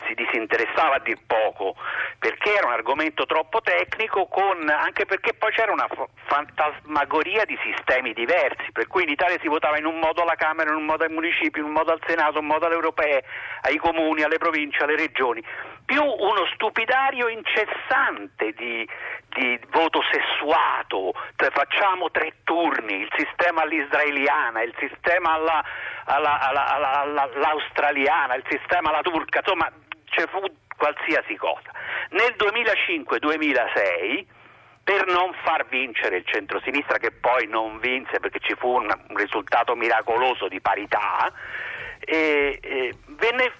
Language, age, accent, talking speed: Italian, 50-69, native, 150 wpm